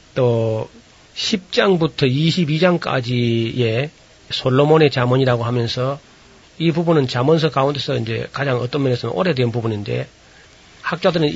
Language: Korean